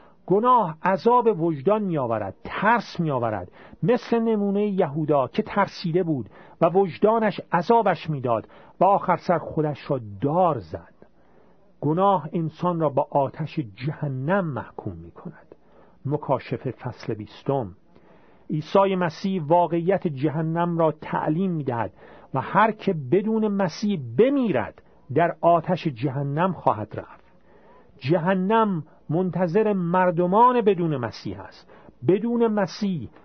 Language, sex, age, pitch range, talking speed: Persian, male, 50-69, 140-200 Hz, 110 wpm